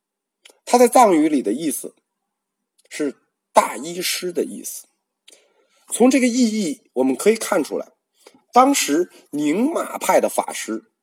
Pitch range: 190-295 Hz